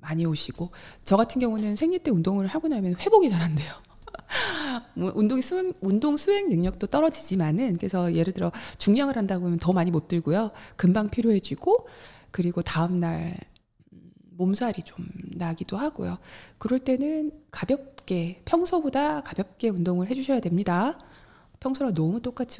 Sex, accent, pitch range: female, native, 175-255 Hz